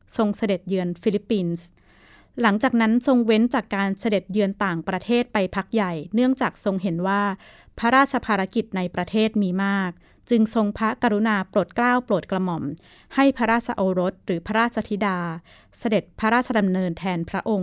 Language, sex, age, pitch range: Thai, female, 20-39, 190-230 Hz